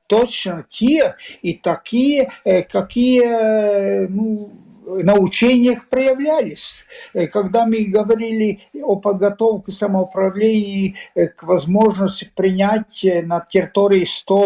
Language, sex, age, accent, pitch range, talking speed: Russian, male, 50-69, native, 180-225 Hz, 85 wpm